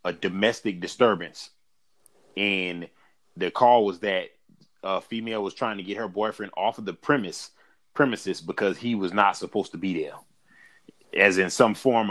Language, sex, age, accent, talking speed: English, male, 30-49, American, 165 wpm